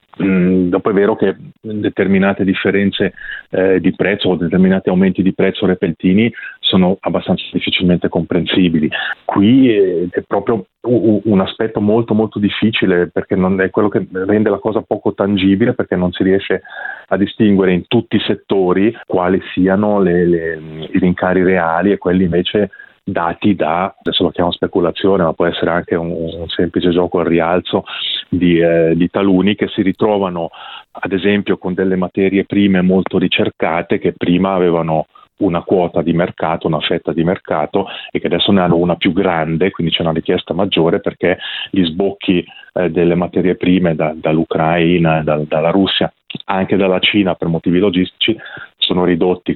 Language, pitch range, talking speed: Italian, 90-100 Hz, 155 wpm